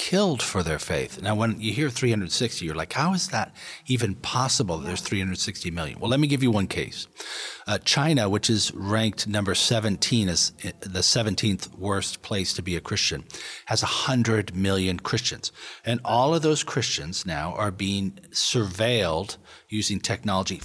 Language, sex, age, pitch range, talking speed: English, male, 40-59, 95-125 Hz, 170 wpm